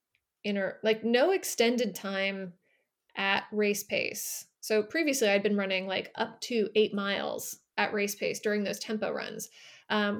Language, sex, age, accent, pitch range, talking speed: English, female, 20-39, American, 205-230 Hz, 155 wpm